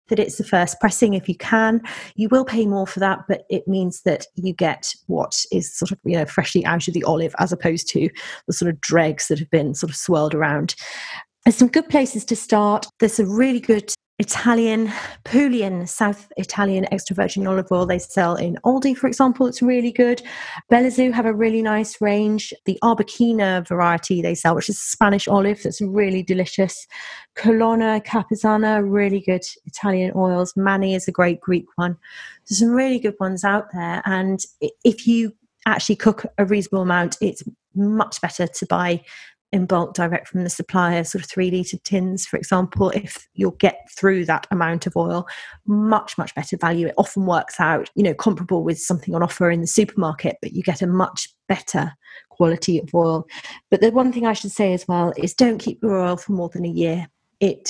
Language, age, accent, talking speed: English, 30-49, British, 200 wpm